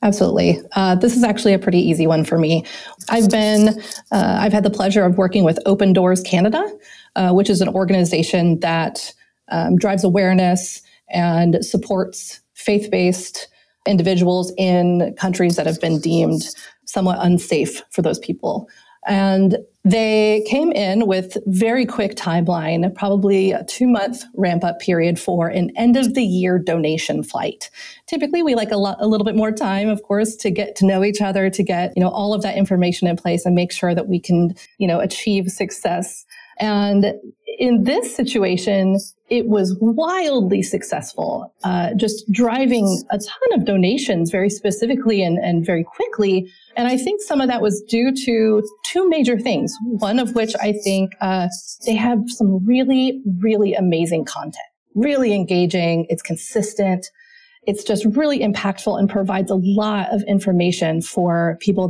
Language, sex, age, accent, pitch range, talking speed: English, female, 30-49, American, 180-220 Hz, 165 wpm